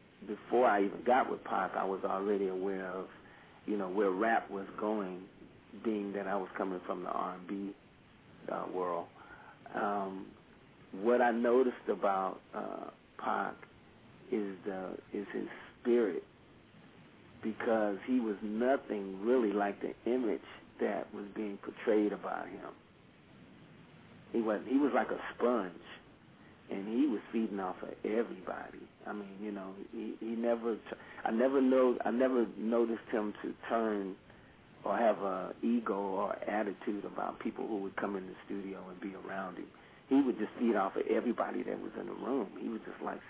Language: English